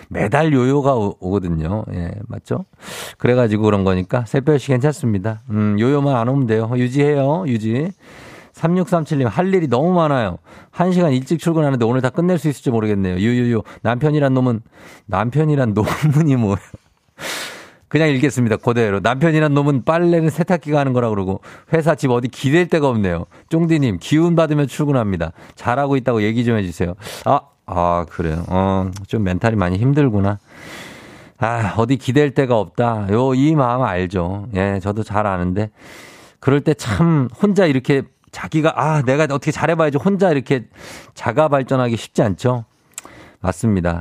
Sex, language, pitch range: male, Korean, 105-150 Hz